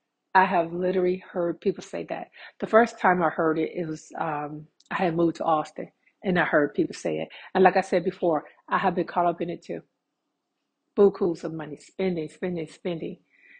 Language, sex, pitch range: English, female, 170-215 Hz